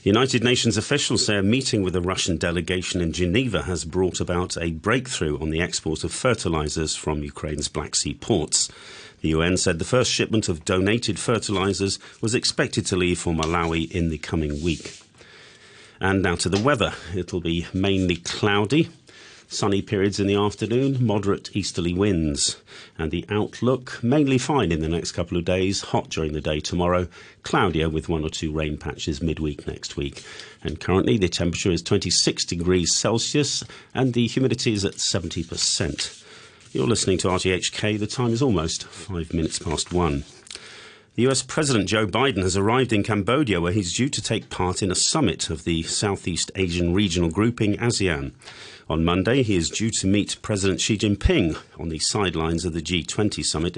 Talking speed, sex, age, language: 175 wpm, male, 40-59, English